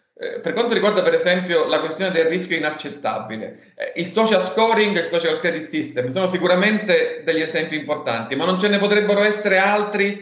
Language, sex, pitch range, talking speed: Italian, male, 155-215 Hz, 175 wpm